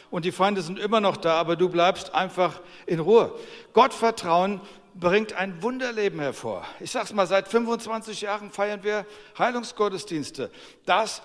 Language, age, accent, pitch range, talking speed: German, 60-79, German, 150-195 Hz, 155 wpm